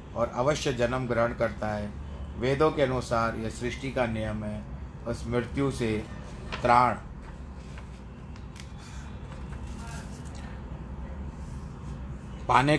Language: Hindi